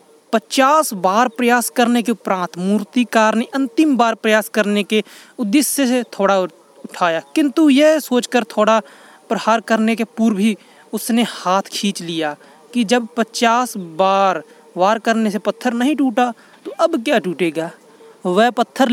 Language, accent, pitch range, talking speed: Hindi, native, 195-250 Hz, 145 wpm